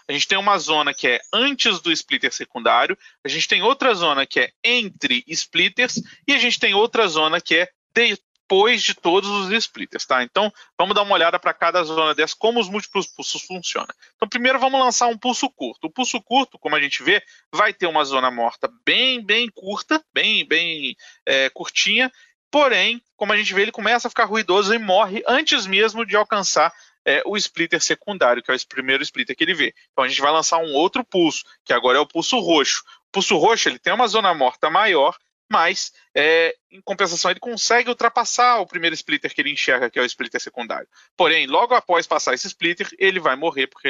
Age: 40-59